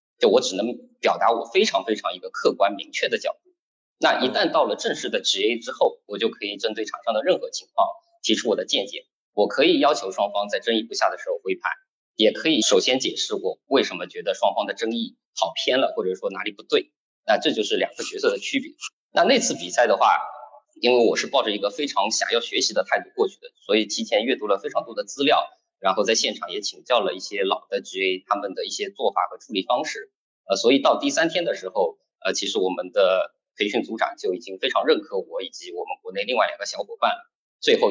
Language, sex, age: Chinese, male, 20-39